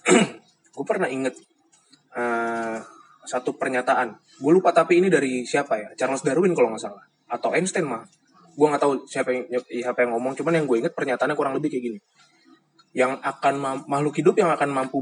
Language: Indonesian